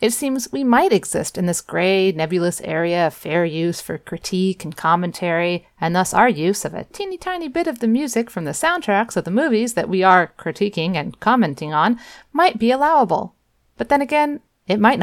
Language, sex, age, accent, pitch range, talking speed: English, female, 30-49, American, 175-255 Hz, 195 wpm